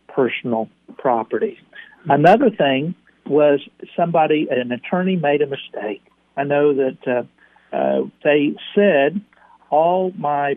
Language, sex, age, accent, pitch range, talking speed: English, male, 60-79, American, 130-170 Hz, 115 wpm